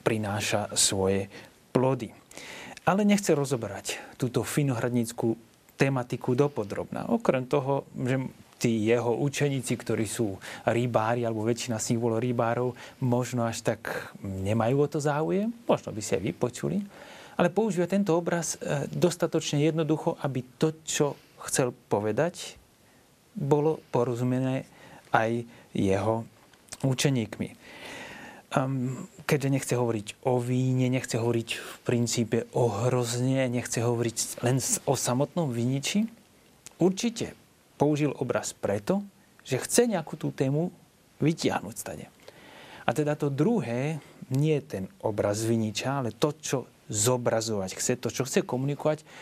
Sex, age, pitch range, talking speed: male, 30-49, 115-150 Hz, 120 wpm